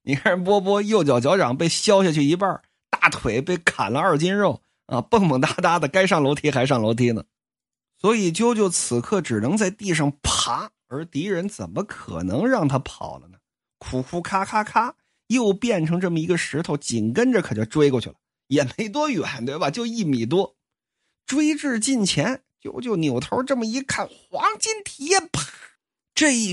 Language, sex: Chinese, male